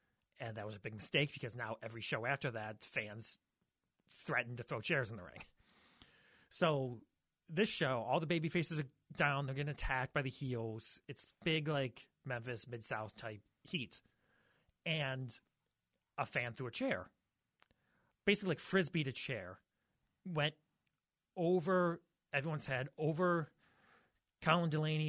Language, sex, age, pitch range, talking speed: English, male, 30-49, 120-170 Hz, 140 wpm